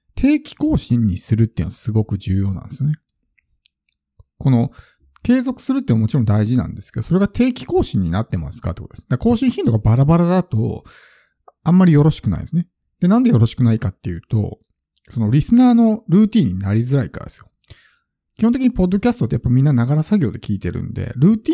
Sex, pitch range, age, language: male, 105-160 Hz, 50-69, Japanese